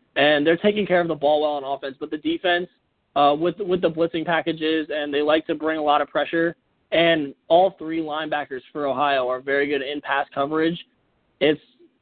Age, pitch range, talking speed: 20-39, 140-165 Hz, 205 wpm